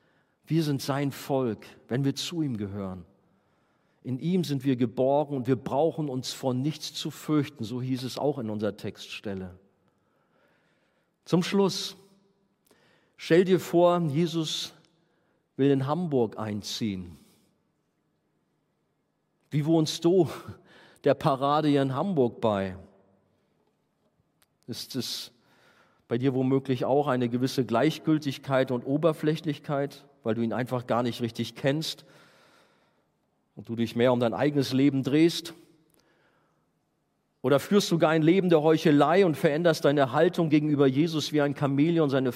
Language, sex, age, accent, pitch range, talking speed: German, male, 50-69, German, 130-165 Hz, 135 wpm